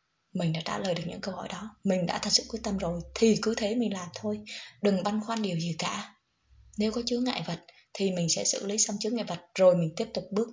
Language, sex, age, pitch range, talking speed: Vietnamese, female, 20-39, 185-230 Hz, 270 wpm